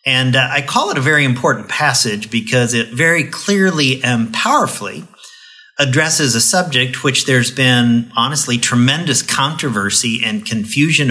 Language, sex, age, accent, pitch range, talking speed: English, male, 50-69, American, 120-170 Hz, 140 wpm